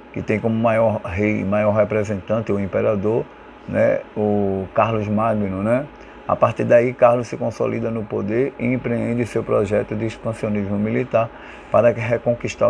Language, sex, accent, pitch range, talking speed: Portuguese, male, Brazilian, 110-120 Hz, 145 wpm